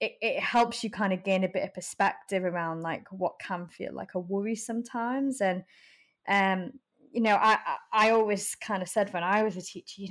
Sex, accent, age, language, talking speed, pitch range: female, British, 20-39, English, 215 wpm, 185-215 Hz